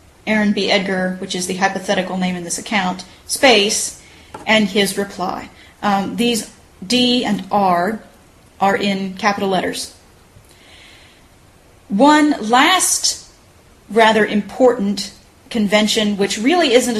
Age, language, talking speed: 40-59, English, 115 wpm